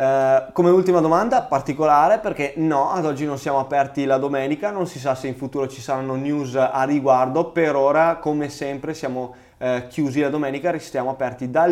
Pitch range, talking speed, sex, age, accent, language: 130-155 Hz, 180 wpm, male, 20-39, native, Italian